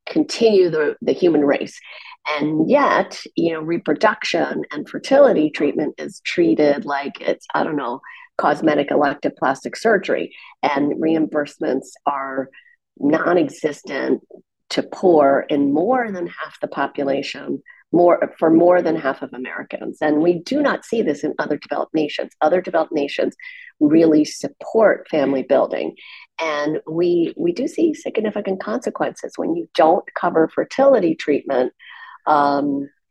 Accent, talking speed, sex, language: American, 135 wpm, female, English